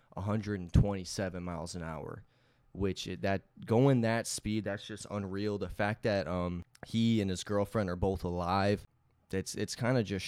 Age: 20-39